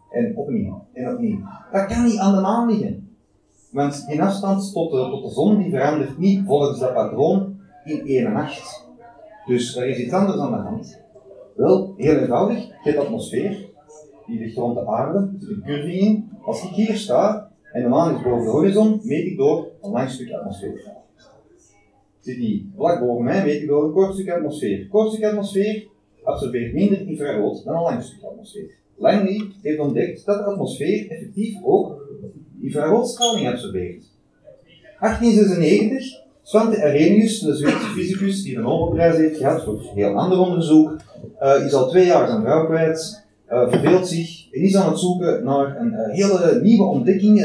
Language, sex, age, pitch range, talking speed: Dutch, male, 30-49, 145-210 Hz, 180 wpm